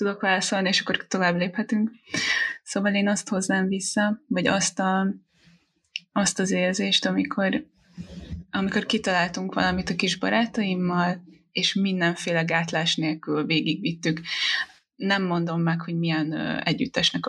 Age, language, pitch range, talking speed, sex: 20-39, Hungarian, 175-260 Hz, 120 wpm, female